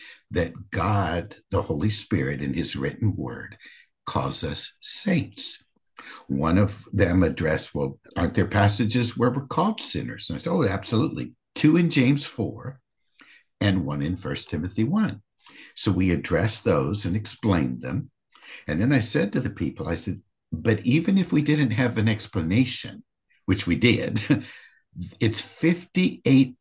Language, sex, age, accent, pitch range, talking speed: English, male, 60-79, American, 85-130 Hz, 155 wpm